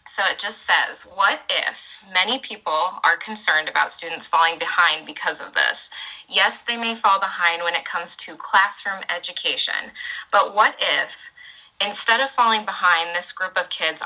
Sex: female